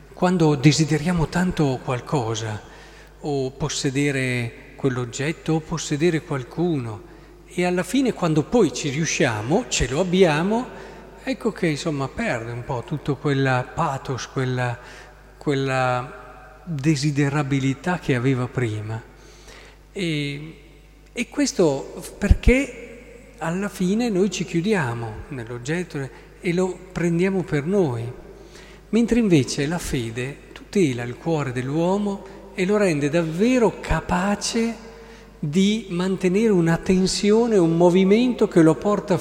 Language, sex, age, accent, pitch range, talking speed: Italian, male, 40-59, native, 135-185 Hz, 110 wpm